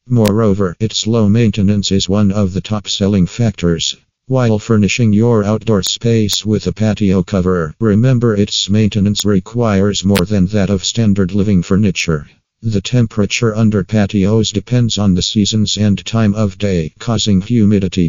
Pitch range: 95-110 Hz